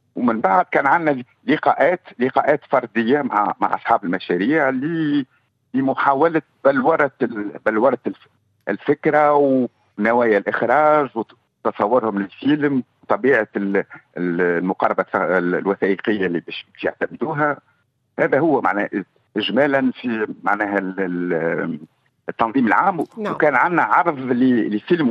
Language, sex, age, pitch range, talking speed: Arabic, male, 60-79, 90-145 Hz, 85 wpm